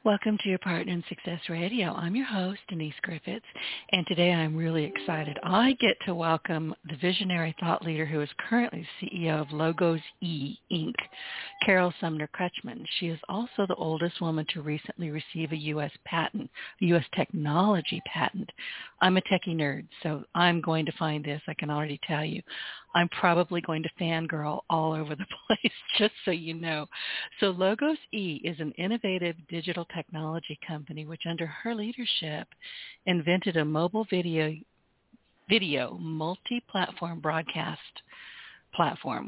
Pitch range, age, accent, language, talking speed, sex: 160-190 Hz, 60-79, American, English, 155 wpm, female